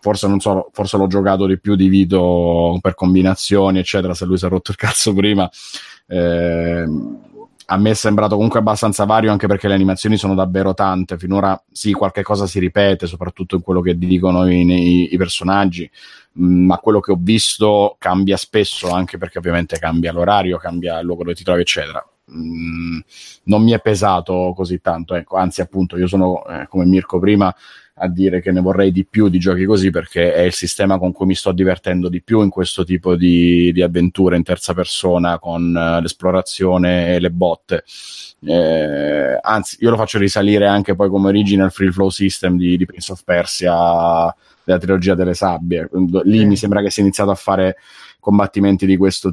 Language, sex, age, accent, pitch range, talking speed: Italian, male, 30-49, native, 90-100 Hz, 190 wpm